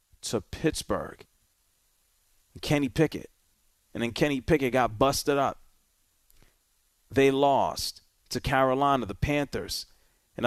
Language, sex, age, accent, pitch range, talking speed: English, male, 30-49, American, 95-140 Hz, 105 wpm